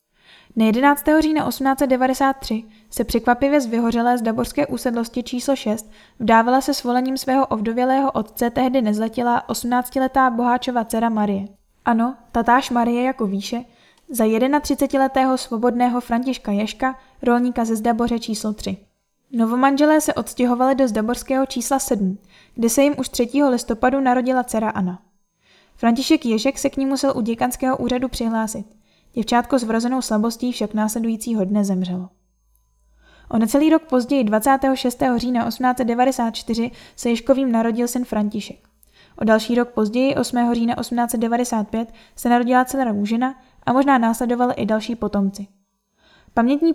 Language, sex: Czech, female